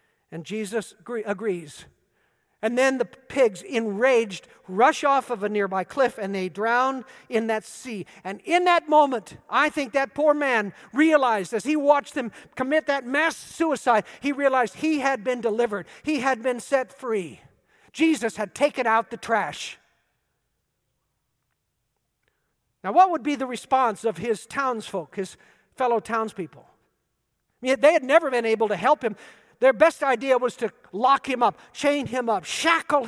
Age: 50-69